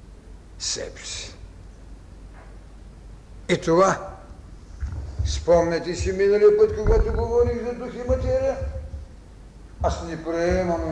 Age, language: 60-79, Bulgarian